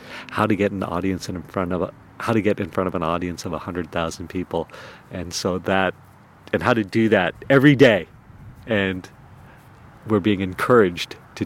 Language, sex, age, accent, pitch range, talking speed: English, male, 50-69, American, 90-115 Hz, 195 wpm